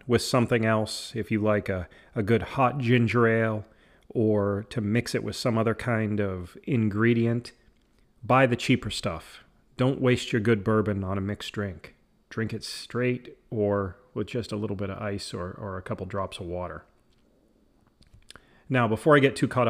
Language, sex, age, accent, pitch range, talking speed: English, male, 40-59, American, 105-125 Hz, 180 wpm